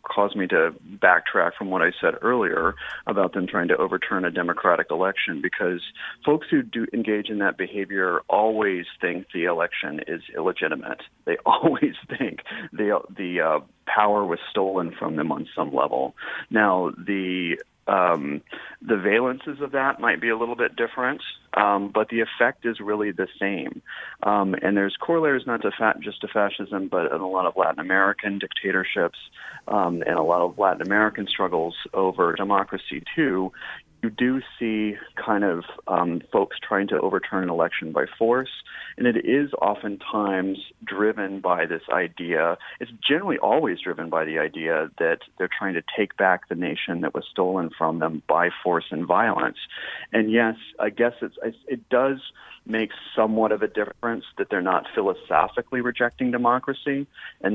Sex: male